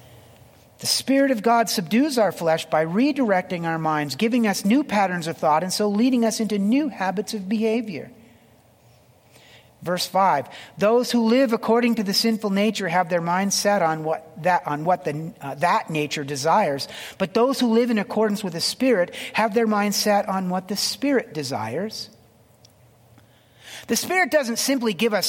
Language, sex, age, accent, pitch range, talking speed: English, male, 40-59, American, 145-220 Hz, 175 wpm